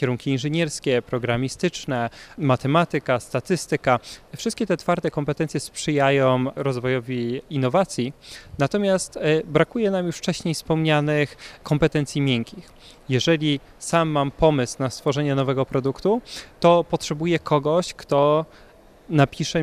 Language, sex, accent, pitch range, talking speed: Polish, male, native, 135-165 Hz, 100 wpm